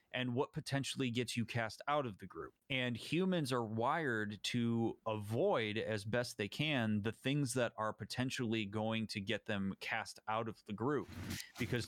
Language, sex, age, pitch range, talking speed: English, male, 30-49, 105-130 Hz, 175 wpm